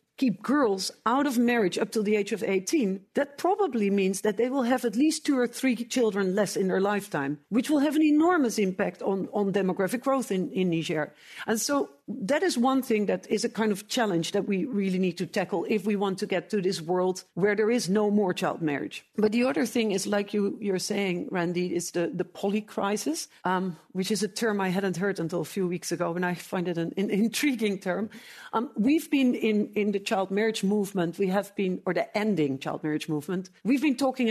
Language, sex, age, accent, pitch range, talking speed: English, female, 50-69, Dutch, 185-225 Hz, 225 wpm